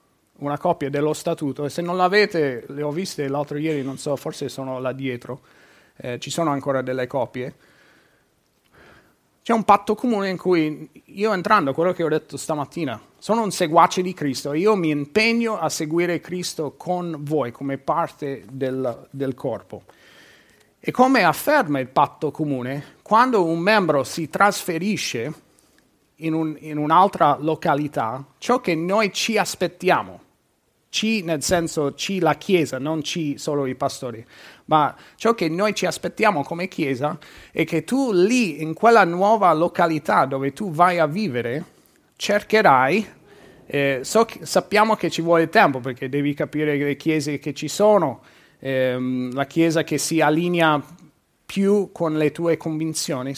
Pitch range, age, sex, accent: 145-185 Hz, 30-49, male, native